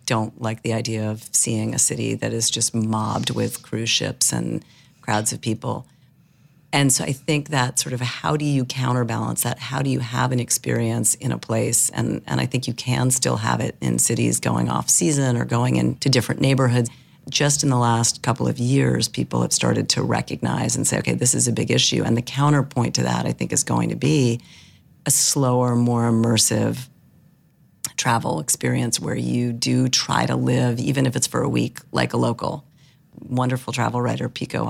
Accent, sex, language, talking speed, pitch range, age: American, female, English, 200 wpm, 115-135 Hz, 40-59